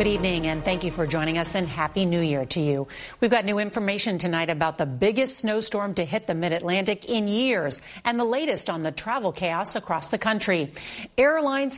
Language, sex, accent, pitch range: English, female, American, 165-215 Hz